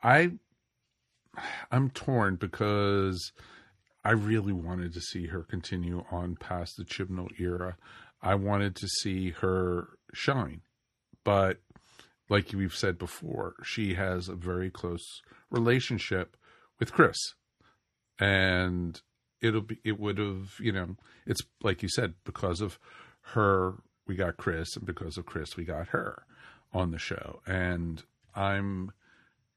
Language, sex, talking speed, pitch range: English, male, 130 wpm, 90-110 Hz